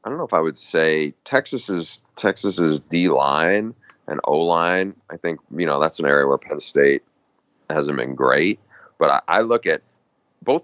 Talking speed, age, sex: 195 wpm, 40-59, male